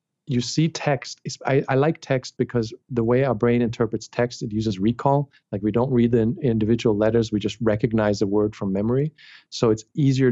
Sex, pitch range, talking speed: male, 115-140 Hz, 205 wpm